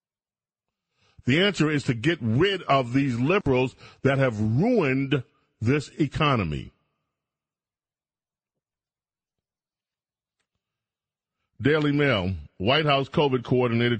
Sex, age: male, 40-59